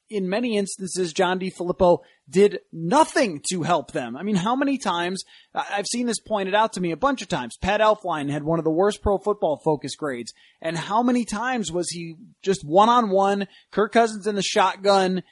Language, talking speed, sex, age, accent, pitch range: English, 200 wpm, male, 20-39, American, 165-210 Hz